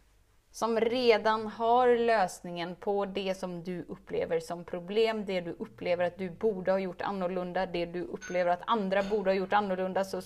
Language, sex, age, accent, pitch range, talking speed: Swedish, female, 20-39, native, 170-230 Hz, 175 wpm